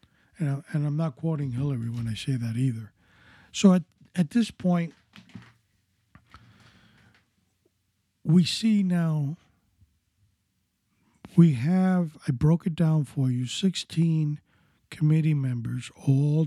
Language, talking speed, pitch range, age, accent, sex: English, 110 wpm, 130-165 Hz, 50-69, American, male